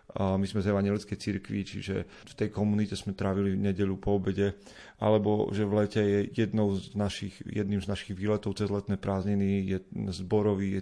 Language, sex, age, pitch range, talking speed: Slovak, male, 30-49, 100-110 Hz, 175 wpm